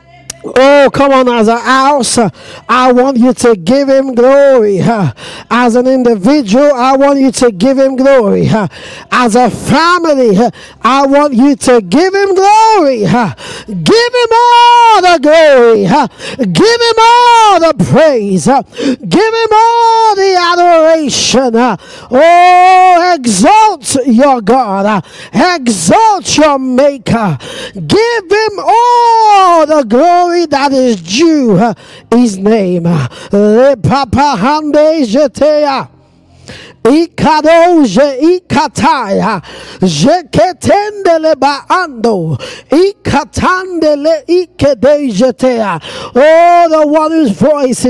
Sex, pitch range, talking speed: male, 240-325 Hz, 95 wpm